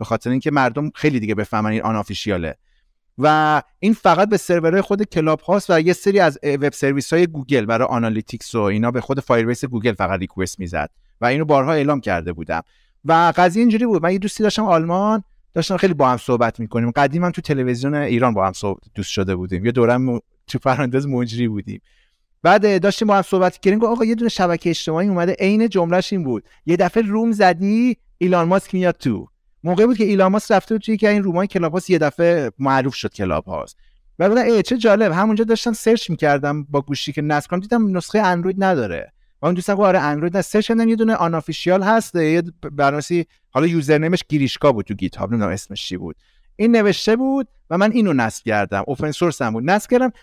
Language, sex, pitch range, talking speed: Persian, male, 125-195 Hz, 190 wpm